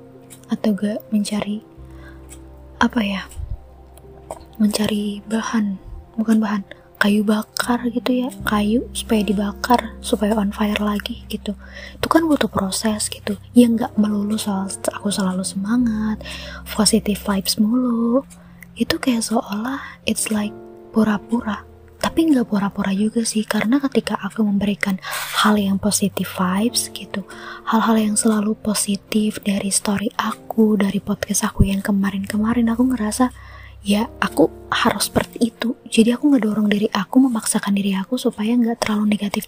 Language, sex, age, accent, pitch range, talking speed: Indonesian, female, 20-39, native, 200-230 Hz, 130 wpm